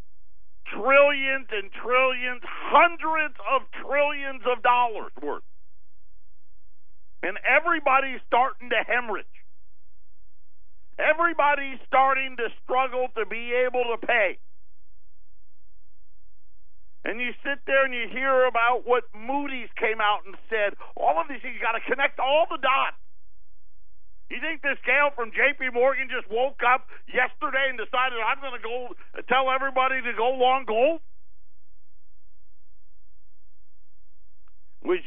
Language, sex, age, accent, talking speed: English, male, 50-69, American, 120 wpm